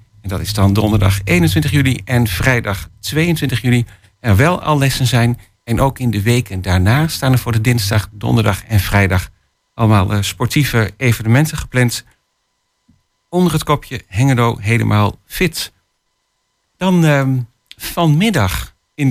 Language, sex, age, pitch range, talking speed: Dutch, male, 50-69, 105-135 Hz, 140 wpm